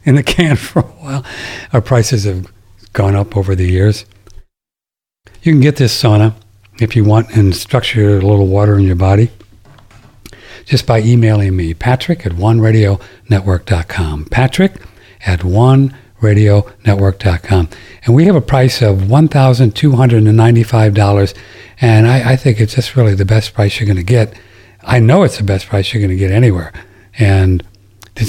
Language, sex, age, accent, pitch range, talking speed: English, male, 60-79, American, 100-125 Hz, 180 wpm